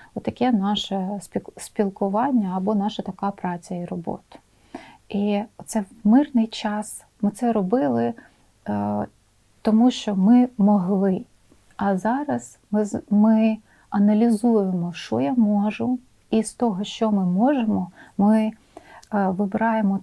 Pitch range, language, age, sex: 190-220 Hz, Ukrainian, 30-49, female